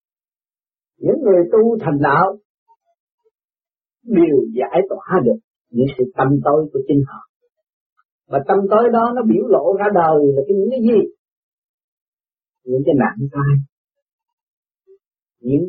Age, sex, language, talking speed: 40-59, male, Vietnamese, 130 wpm